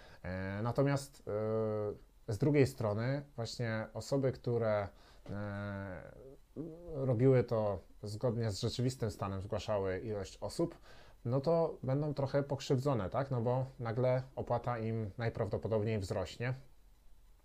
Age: 20-39